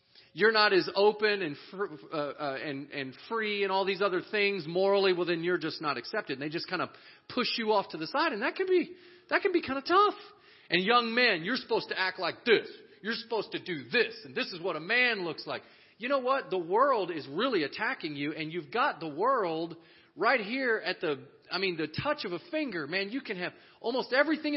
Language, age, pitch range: English, 40-59, 180-280 Hz